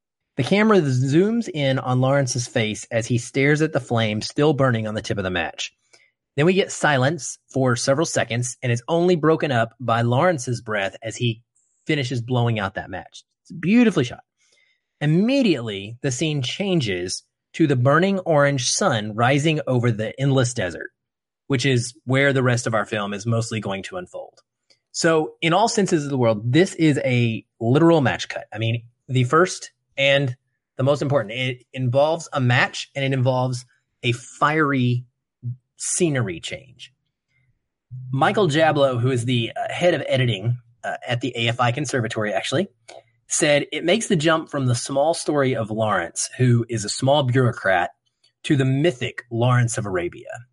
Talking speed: 170 wpm